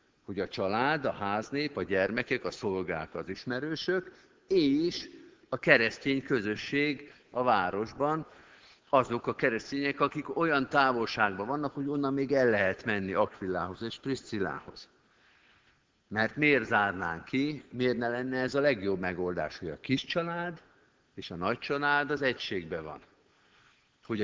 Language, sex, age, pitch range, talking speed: Hungarian, male, 50-69, 100-140 Hz, 140 wpm